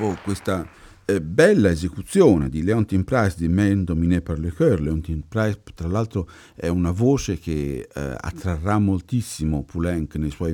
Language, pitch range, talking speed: Italian, 75-110 Hz, 135 wpm